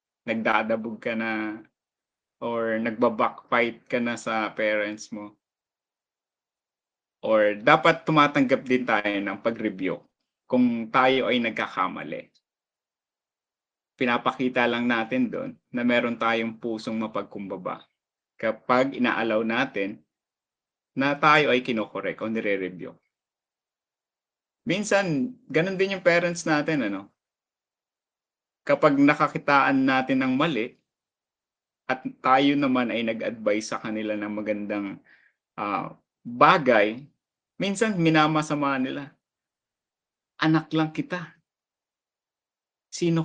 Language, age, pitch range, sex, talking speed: Filipino, 20-39, 110-150 Hz, male, 95 wpm